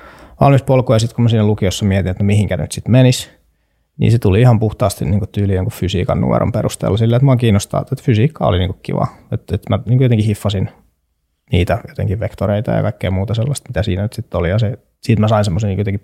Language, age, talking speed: Finnish, 20-39, 230 wpm